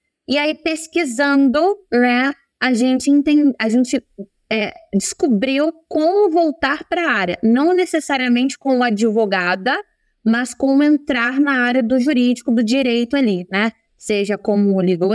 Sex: female